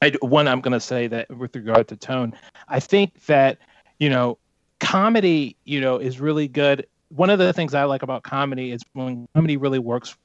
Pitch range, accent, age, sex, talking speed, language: 125-145 Hz, American, 30-49, male, 200 wpm, English